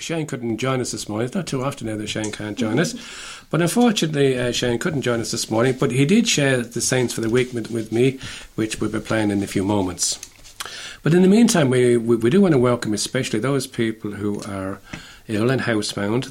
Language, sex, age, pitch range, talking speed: English, male, 50-69, 105-130 Hz, 230 wpm